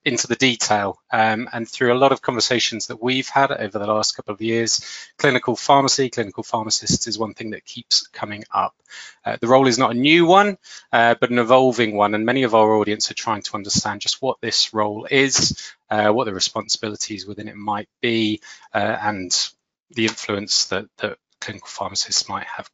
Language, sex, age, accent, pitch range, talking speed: English, male, 20-39, British, 110-135 Hz, 200 wpm